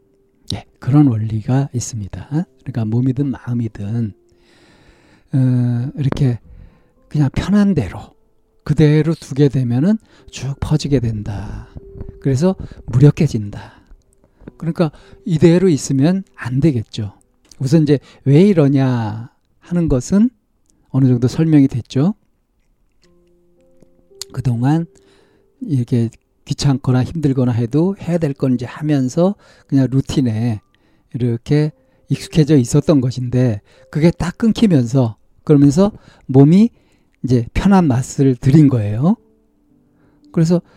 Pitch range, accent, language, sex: 120-160 Hz, native, Korean, male